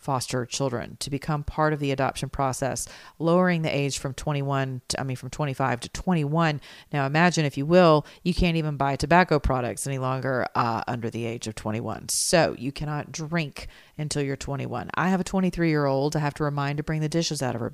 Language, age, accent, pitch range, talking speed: English, 40-59, American, 130-150 Hz, 215 wpm